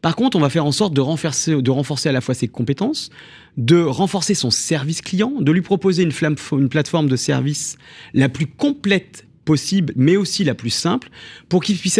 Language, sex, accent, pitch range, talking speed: French, male, French, 135-190 Hz, 205 wpm